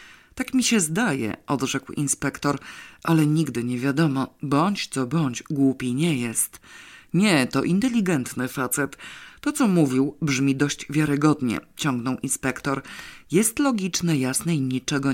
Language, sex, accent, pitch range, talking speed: Polish, female, native, 135-170 Hz, 130 wpm